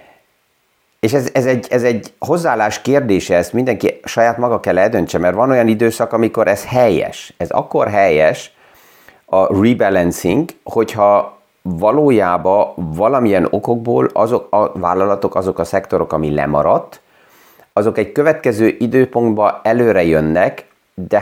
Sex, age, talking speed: male, 30-49, 125 wpm